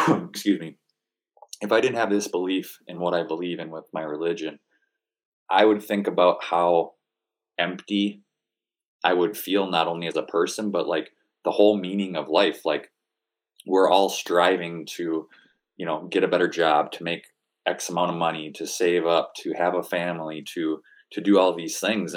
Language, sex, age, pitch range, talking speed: English, male, 20-39, 80-100 Hz, 180 wpm